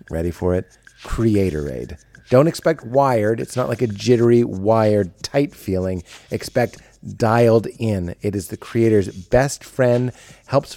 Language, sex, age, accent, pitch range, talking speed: English, male, 30-49, American, 100-130 Hz, 145 wpm